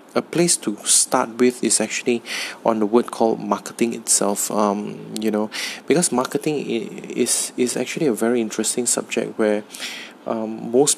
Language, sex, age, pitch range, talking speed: English, male, 20-39, 110-120 Hz, 155 wpm